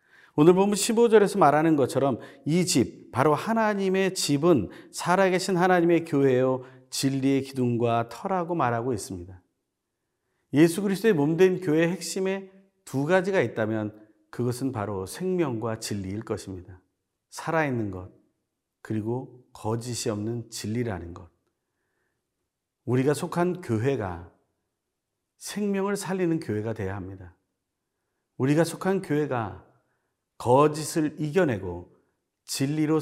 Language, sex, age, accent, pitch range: Korean, male, 40-59, native, 110-160 Hz